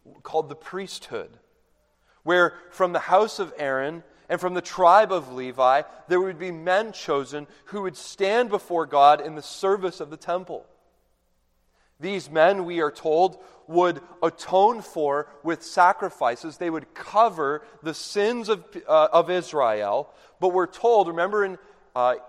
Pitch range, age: 150-210 Hz, 30-49